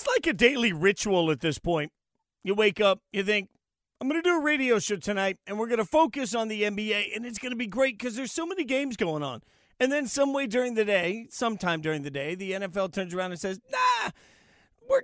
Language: English